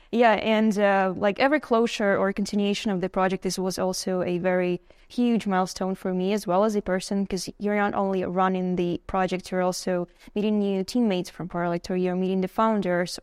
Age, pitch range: 10-29, 180-210 Hz